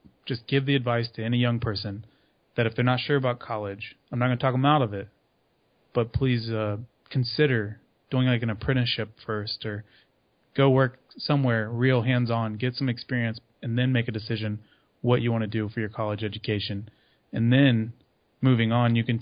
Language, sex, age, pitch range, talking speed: English, male, 20-39, 110-125 Hz, 195 wpm